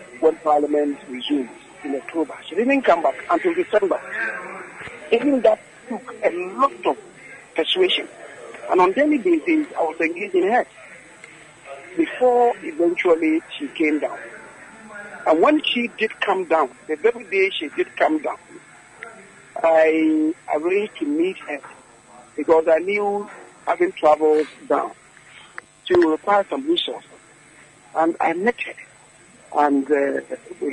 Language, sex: English, male